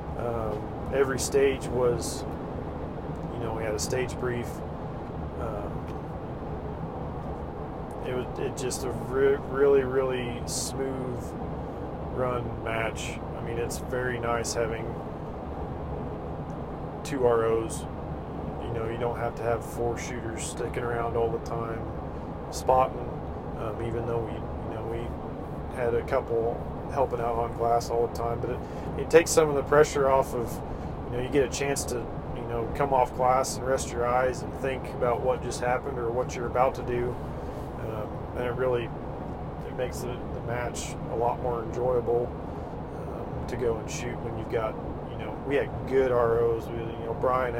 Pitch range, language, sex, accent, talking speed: 115-125 Hz, English, male, American, 170 wpm